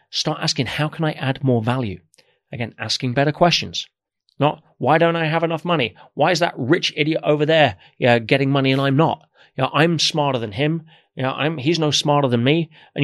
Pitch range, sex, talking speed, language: 120-160 Hz, male, 220 wpm, Bulgarian